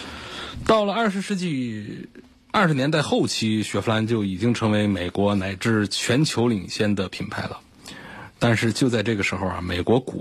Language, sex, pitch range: Chinese, male, 100-130 Hz